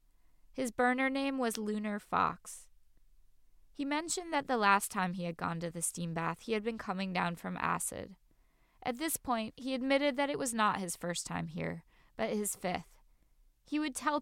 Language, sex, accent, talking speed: English, female, American, 190 wpm